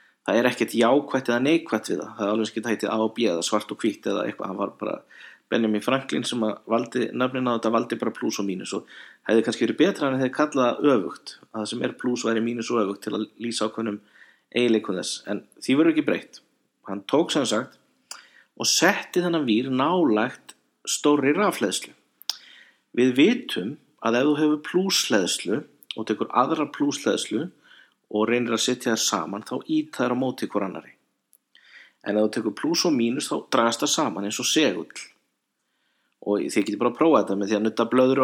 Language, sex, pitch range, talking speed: English, male, 110-135 Hz, 170 wpm